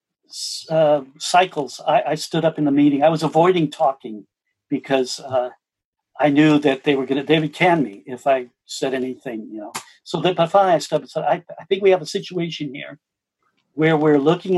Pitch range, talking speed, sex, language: 145-180 Hz, 215 wpm, male, English